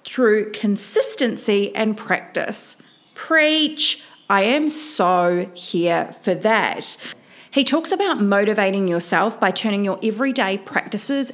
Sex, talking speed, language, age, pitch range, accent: female, 110 wpm, English, 30-49, 190-255 Hz, Australian